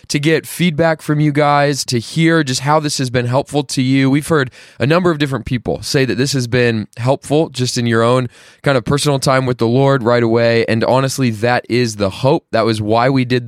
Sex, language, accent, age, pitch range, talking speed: male, English, American, 20-39, 115-145 Hz, 235 wpm